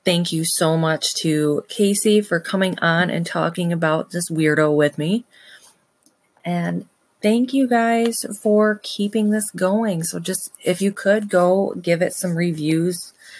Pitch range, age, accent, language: 155-210 Hz, 30-49, American, English